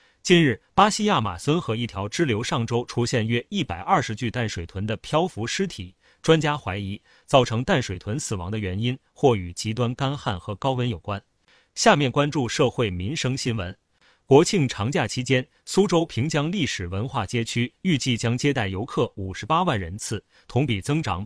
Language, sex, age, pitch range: Chinese, male, 30-49, 105-145 Hz